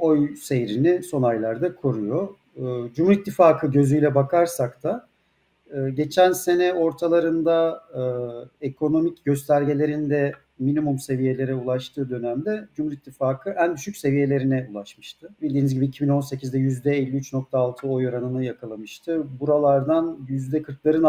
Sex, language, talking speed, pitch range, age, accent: male, Turkish, 105 wpm, 125-165 Hz, 50-69, native